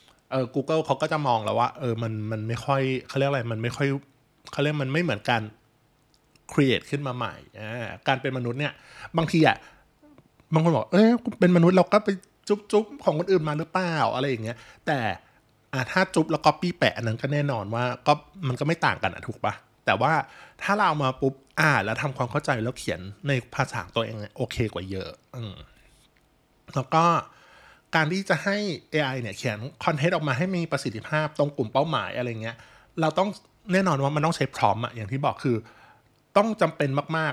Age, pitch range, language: 20-39, 120-160 Hz, Thai